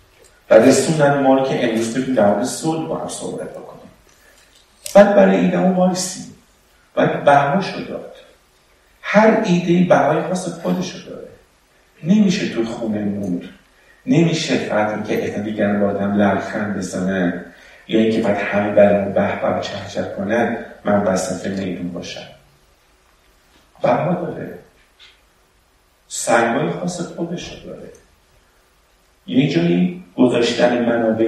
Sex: male